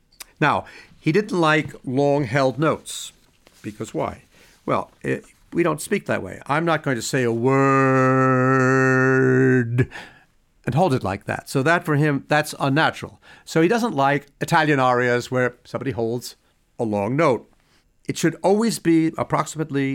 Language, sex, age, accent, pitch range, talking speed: English, male, 50-69, American, 120-155 Hz, 150 wpm